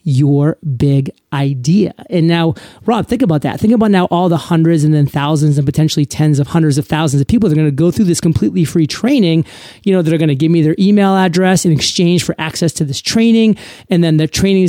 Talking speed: 235 wpm